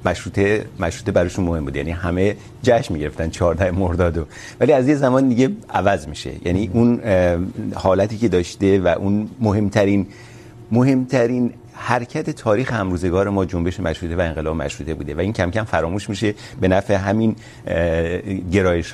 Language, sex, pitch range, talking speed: Urdu, male, 95-125 Hz, 145 wpm